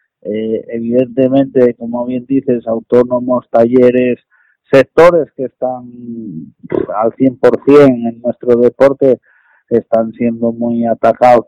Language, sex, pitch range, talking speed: Spanish, male, 115-125 Hz, 105 wpm